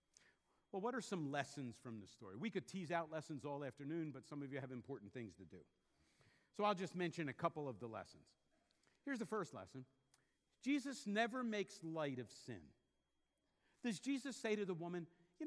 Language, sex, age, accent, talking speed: English, male, 50-69, American, 195 wpm